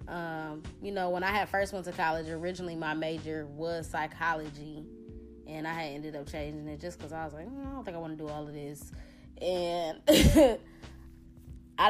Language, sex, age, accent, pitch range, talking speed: English, female, 20-39, American, 155-190 Hz, 200 wpm